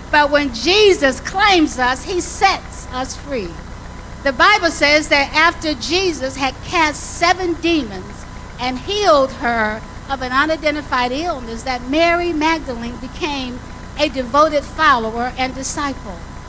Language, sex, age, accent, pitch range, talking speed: English, female, 50-69, American, 260-330 Hz, 125 wpm